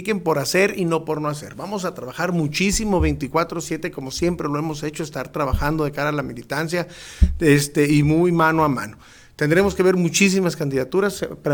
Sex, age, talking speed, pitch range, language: male, 50-69, 185 wpm, 145-180 Hz, Spanish